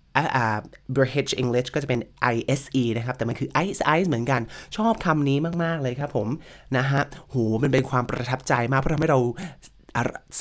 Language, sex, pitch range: Thai, male, 120-155 Hz